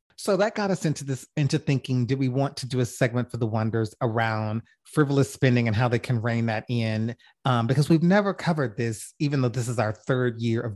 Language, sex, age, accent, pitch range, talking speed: English, male, 30-49, American, 120-155 Hz, 235 wpm